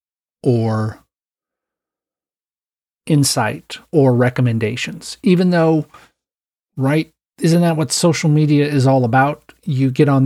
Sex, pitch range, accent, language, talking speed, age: male, 120-150 Hz, American, English, 105 wpm, 40-59